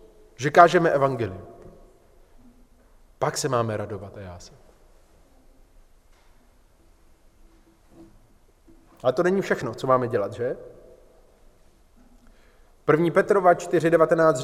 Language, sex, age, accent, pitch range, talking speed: Czech, male, 30-49, native, 150-230 Hz, 85 wpm